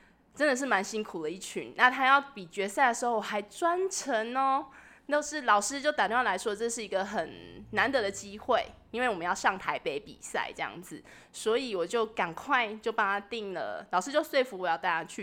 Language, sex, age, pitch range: Chinese, female, 20-39, 190-240 Hz